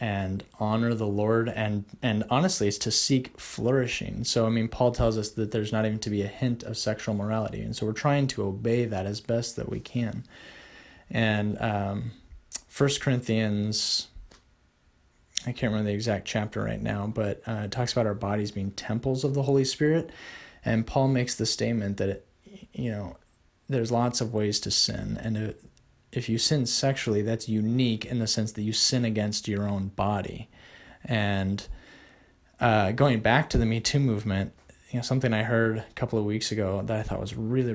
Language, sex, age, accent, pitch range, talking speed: English, male, 30-49, American, 105-120 Hz, 190 wpm